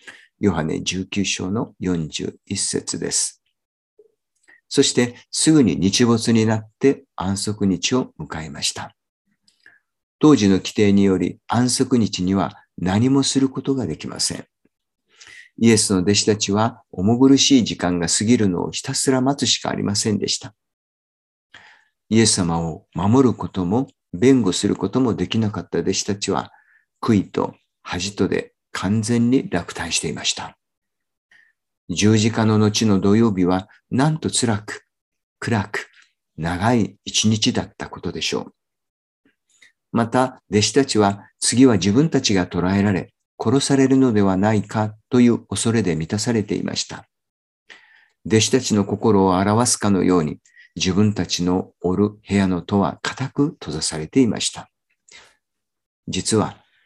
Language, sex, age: Japanese, male, 50-69